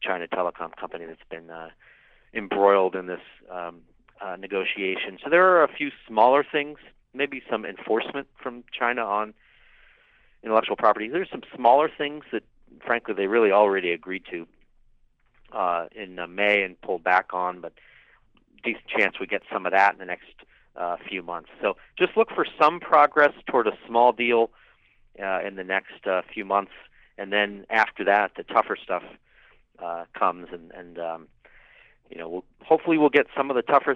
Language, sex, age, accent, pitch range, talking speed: English, male, 40-59, American, 90-125 Hz, 175 wpm